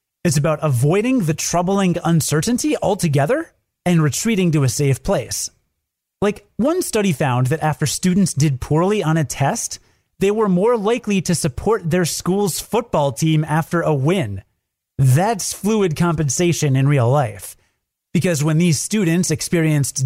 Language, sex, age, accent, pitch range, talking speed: English, male, 30-49, American, 140-195 Hz, 145 wpm